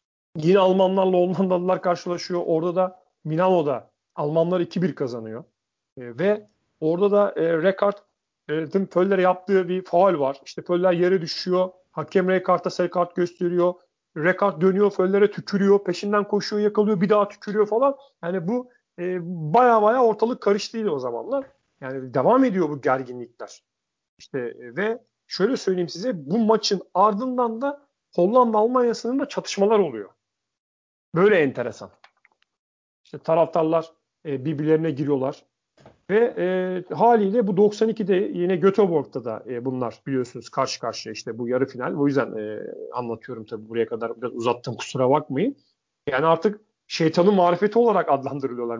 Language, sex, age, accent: Turkish, male, 40-59, native